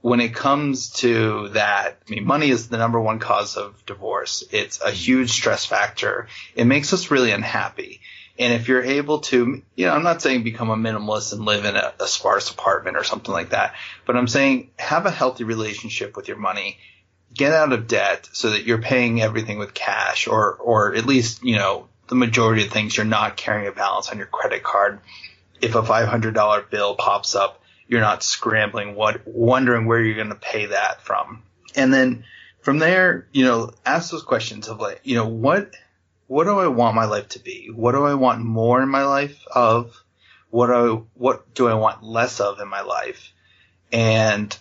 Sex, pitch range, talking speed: male, 105-130 Hz, 205 wpm